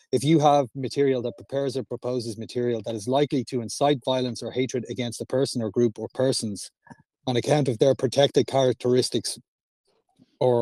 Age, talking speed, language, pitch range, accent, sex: 30-49, 175 wpm, English, 120-140 Hz, Irish, male